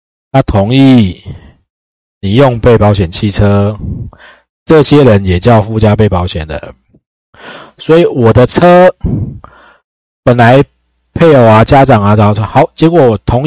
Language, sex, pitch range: Chinese, male, 105-140 Hz